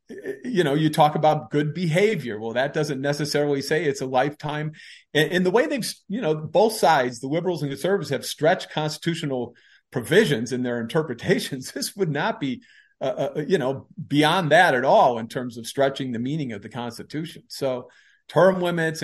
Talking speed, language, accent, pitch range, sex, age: 180 wpm, English, American, 115-150 Hz, male, 40-59